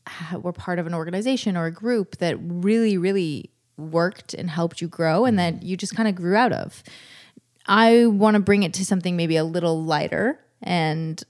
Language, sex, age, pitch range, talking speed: English, female, 20-39, 170-205 Hz, 195 wpm